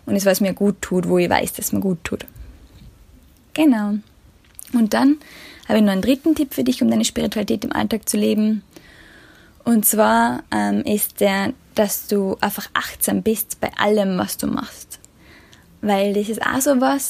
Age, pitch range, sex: 10-29, 200-240 Hz, female